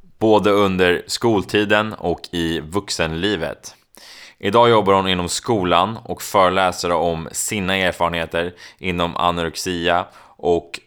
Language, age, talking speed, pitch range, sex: Swedish, 20-39, 105 wpm, 85-100 Hz, male